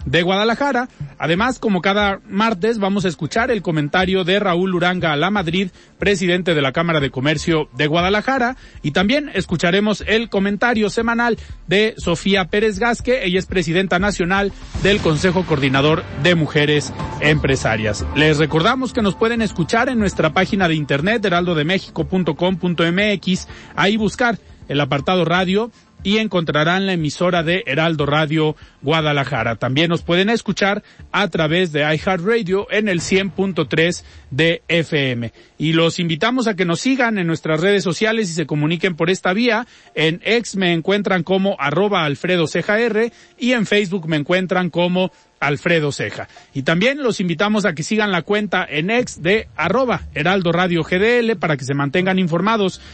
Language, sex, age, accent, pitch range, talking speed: Spanish, male, 40-59, Mexican, 160-210 Hz, 160 wpm